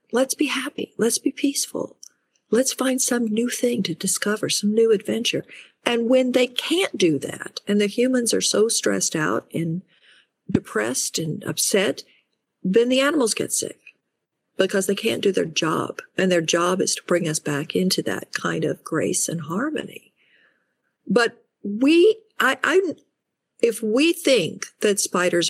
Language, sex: English, female